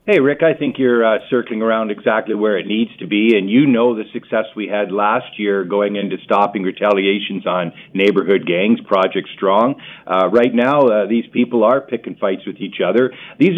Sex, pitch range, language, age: male, 110-130 Hz, English, 50-69